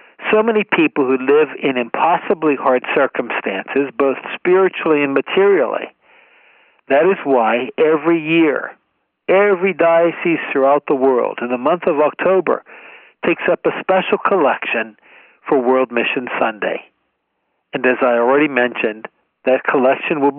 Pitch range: 130-205 Hz